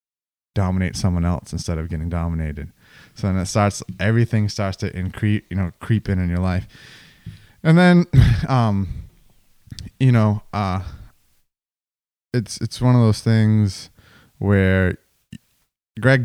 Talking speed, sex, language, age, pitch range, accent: 135 wpm, male, English, 20-39, 90-105 Hz, American